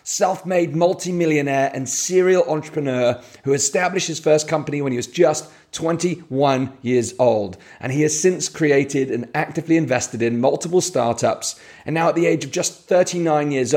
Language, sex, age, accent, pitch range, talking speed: English, male, 30-49, British, 125-155 Hz, 160 wpm